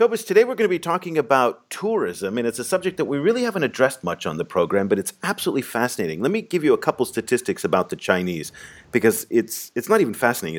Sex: male